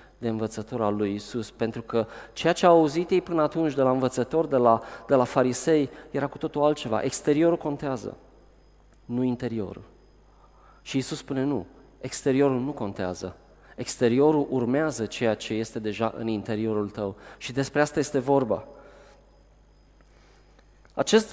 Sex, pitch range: male, 120-165 Hz